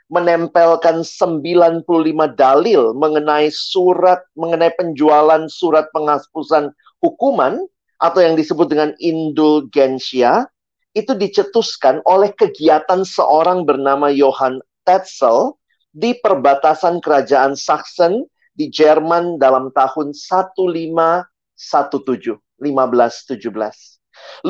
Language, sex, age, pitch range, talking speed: Indonesian, male, 40-59, 140-190 Hz, 80 wpm